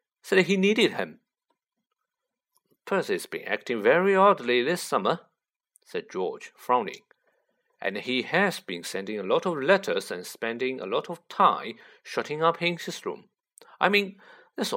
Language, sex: Chinese, male